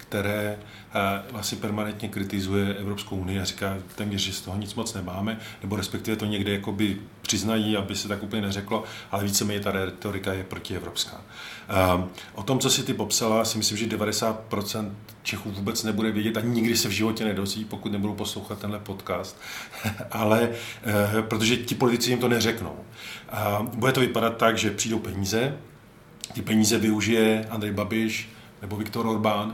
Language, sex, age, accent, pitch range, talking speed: Czech, male, 40-59, native, 105-115 Hz, 165 wpm